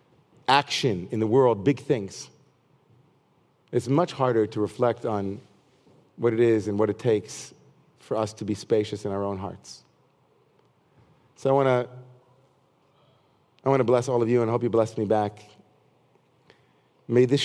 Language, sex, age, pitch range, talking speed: English, male, 40-59, 110-130 Hz, 155 wpm